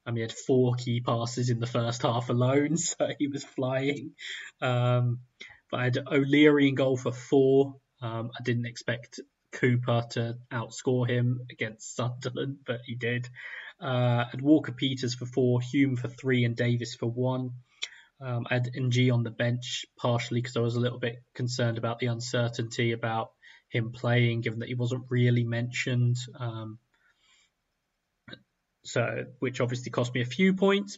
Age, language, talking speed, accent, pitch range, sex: 20-39, English, 170 wpm, British, 120-130 Hz, male